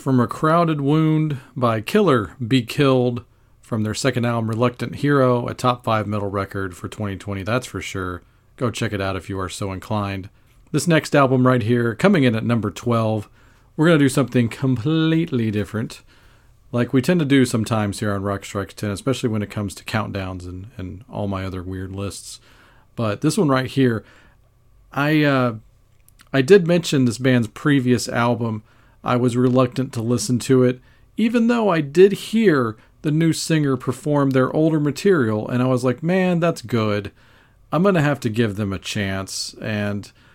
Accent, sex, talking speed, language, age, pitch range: American, male, 185 wpm, English, 40-59, 110-135 Hz